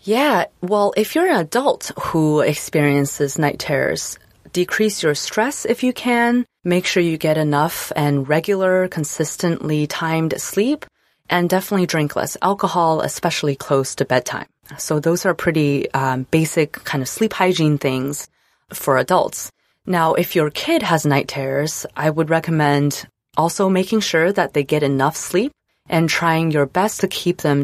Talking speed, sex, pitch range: 160 wpm, female, 140-185 Hz